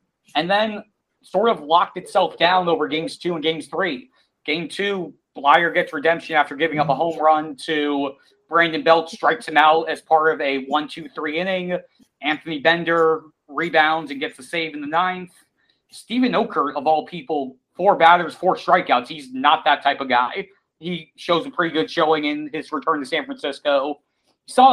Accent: American